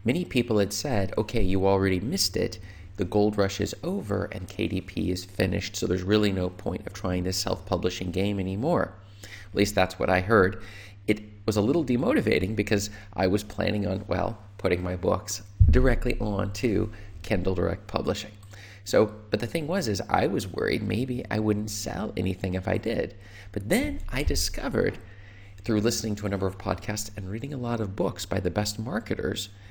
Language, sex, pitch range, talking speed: English, male, 95-110 Hz, 190 wpm